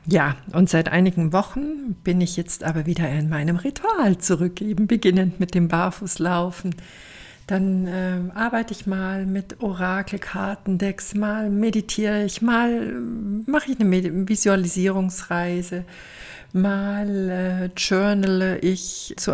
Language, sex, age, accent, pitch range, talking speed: German, female, 50-69, German, 175-200 Hz, 120 wpm